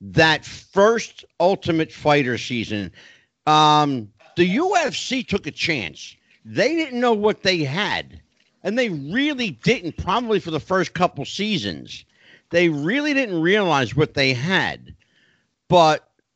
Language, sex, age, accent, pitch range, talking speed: English, male, 50-69, American, 145-200 Hz, 130 wpm